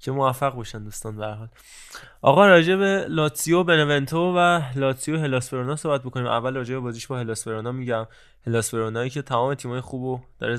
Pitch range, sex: 115-130 Hz, male